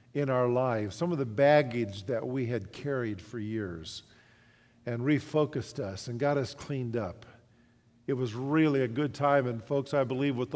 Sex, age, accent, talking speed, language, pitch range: male, 50-69, American, 180 wpm, English, 120-140 Hz